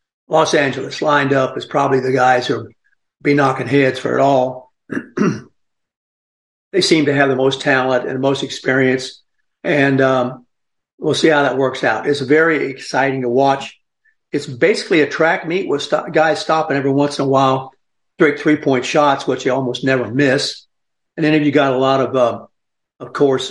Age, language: 50-69, English